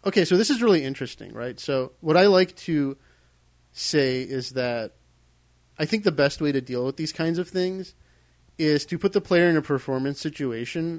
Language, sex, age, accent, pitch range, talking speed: English, male, 30-49, American, 115-155 Hz, 195 wpm